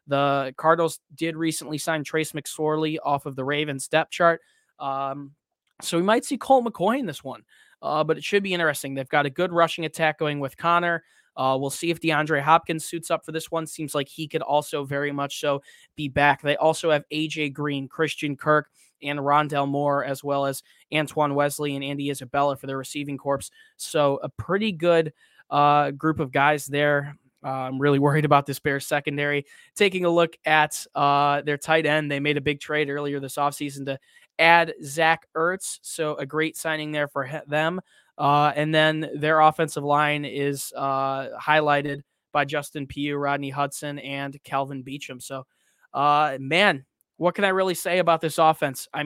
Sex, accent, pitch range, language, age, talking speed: male, American, 140-160 Hz, English, 20-39, 190 wpm